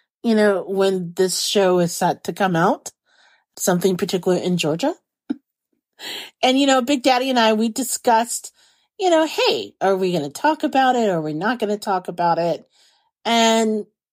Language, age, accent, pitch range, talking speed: English, 30-49, American, 170-225 Hz, 185 wpm